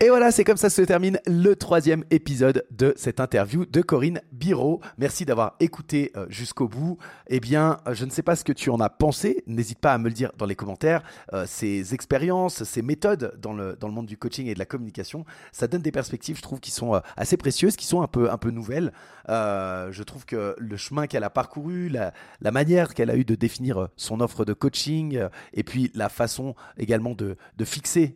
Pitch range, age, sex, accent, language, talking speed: 110-155 Hz, 30-49, male, French, French, 220 wpm